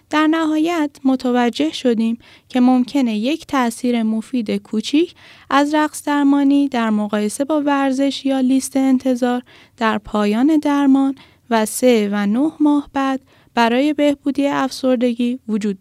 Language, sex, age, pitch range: Persian, female, 10-29, 215-275 Hz